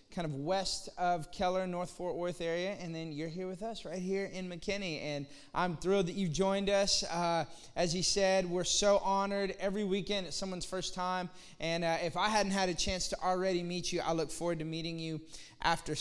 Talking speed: 215 wpm